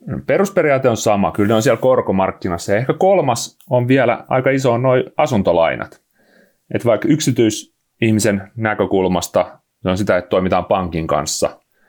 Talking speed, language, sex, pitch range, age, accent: 140 wpm, Finnish, male, 90-125 Hz, 30-49, native